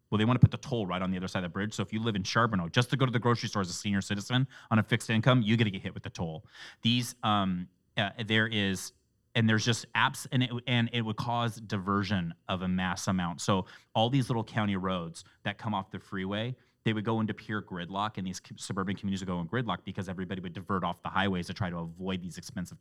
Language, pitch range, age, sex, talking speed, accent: English, 95-115 Hz, 30-49, male, 265 wpm, American